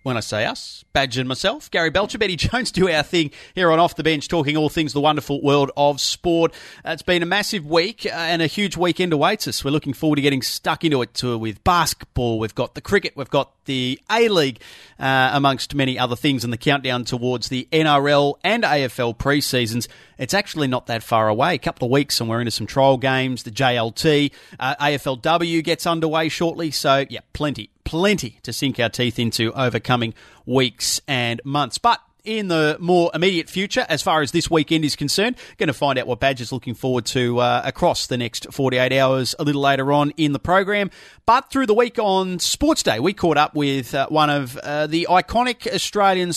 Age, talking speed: 30-49, 205 wpm